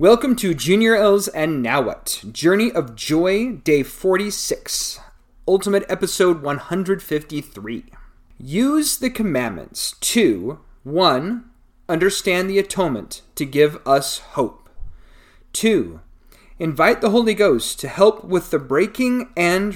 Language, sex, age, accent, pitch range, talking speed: English, male, 40-59, American, 140-205 Hz, 115 wpm